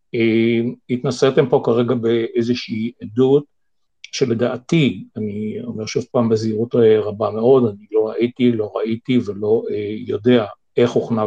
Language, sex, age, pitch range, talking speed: Hebrew, male, 50-69, 110-135 Hz, 130 wpm